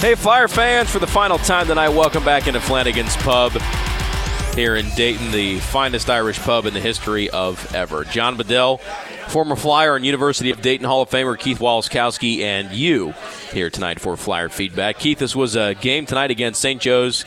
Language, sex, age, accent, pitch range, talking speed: English, male, 30-49, American, 100-140 Hz, 190 wpm